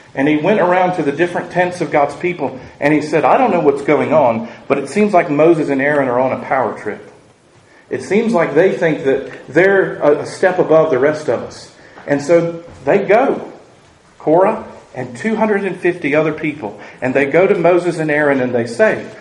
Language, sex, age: English, male, 40-59